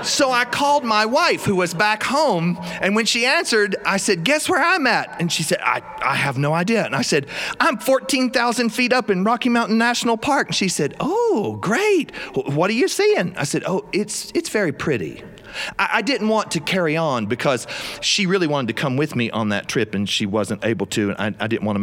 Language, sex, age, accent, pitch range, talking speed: English, male, 40-59, American, 140-230 Hz, 230 wpm